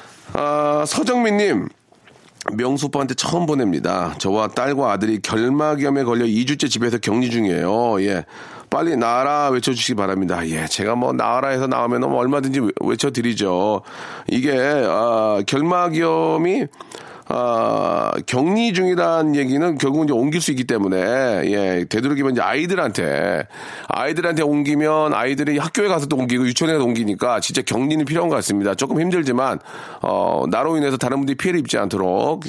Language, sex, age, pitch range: Korean, male, 40-59, 120-155 Hz